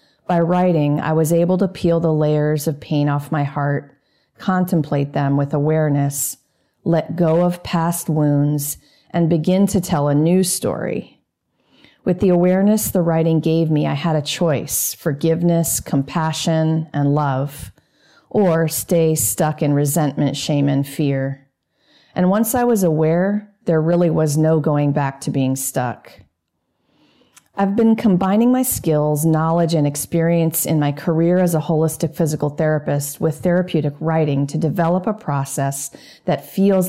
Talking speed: 150 wpm